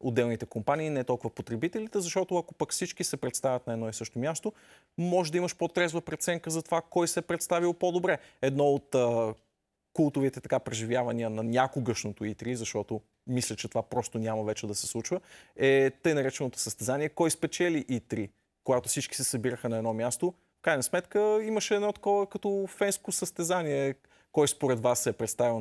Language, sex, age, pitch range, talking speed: Bulgarian, male, 30-49, 120-185 Hz, 180 wpm